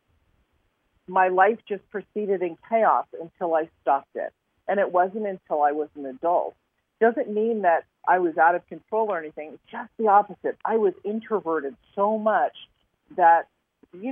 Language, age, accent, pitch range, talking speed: English, 40-59, American, 155-205 Hz, 165 wpm